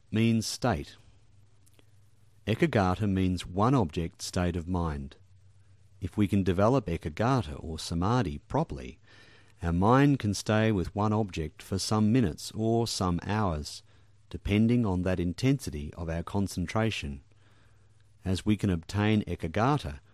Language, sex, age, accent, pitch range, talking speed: English, male, 50-69, Australian, 90-105 Hz, 125 wpm